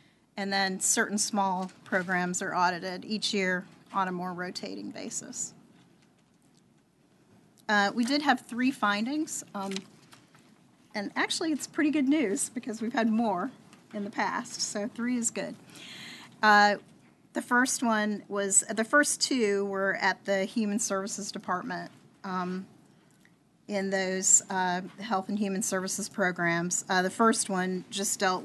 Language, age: English, 40-59